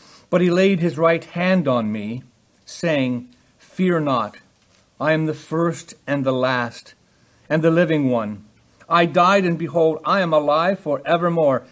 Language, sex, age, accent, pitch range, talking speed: English, male, 50-69, American, 115-165 Hz, 155 wpm